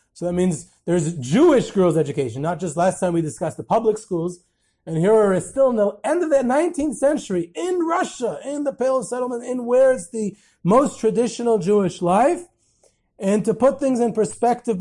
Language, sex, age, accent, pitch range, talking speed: English, male, 30-49, American, 160-220 Hz, 195 wpm